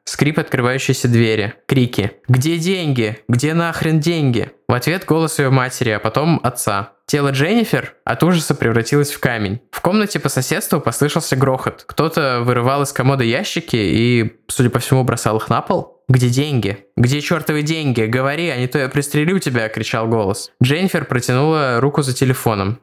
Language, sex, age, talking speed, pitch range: Russian, male, 20-39, 165 wpm, 120-145 Hz